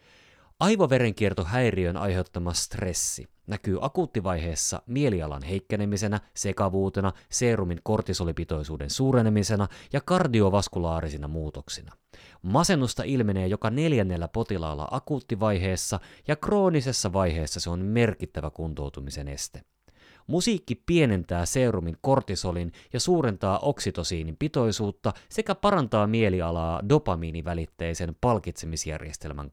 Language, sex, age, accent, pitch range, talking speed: Finnish, male, 30-49, native, 90-125 Hz, 85 wpm